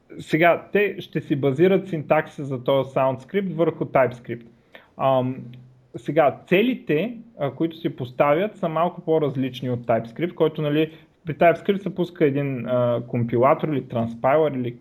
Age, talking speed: 30-49, 140 wpm